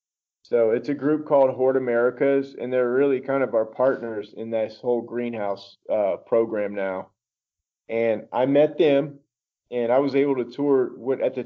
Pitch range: 115-140 Hz